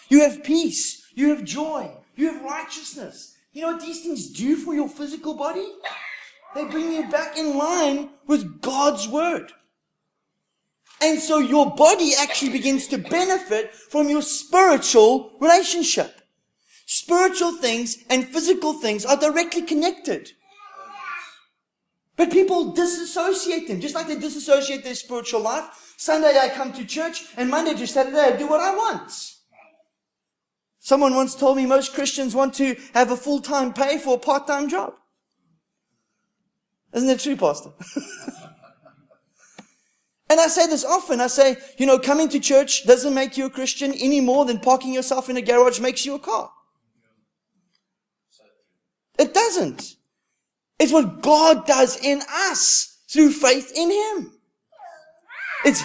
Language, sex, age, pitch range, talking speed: English, male, 30-49, 260-325 Hz, 145 wpm